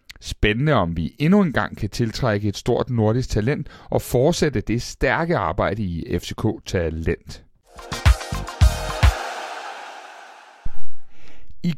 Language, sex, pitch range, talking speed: Danish, male, 95-140 Hz, 105 wpm